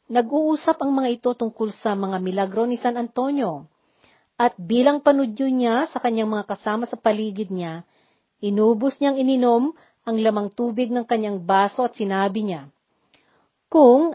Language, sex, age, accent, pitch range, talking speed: Filipino, female, 40-59, native, 210-265 Hz, 150 wpm